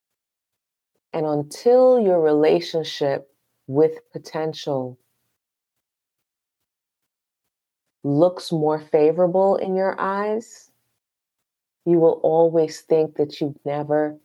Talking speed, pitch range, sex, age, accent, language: 80 wpm, 145-195 Hz, female, 30-49, American, English